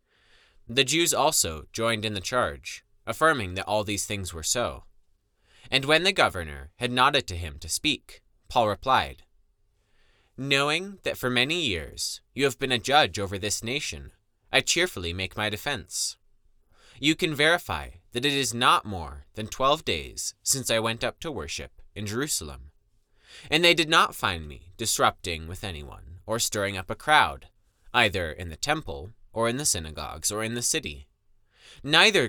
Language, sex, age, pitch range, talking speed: English, male, 20-39, 85-130 Hz, 165 wpm